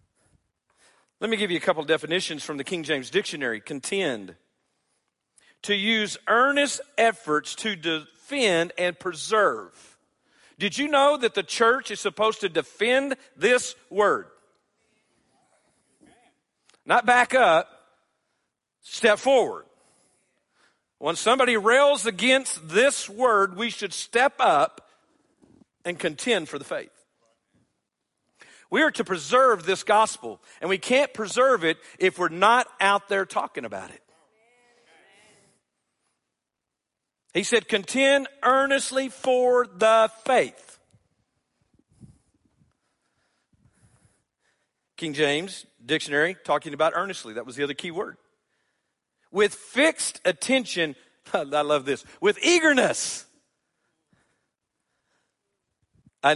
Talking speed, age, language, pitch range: 105 wpm, 50-69, English, 165-255 Hz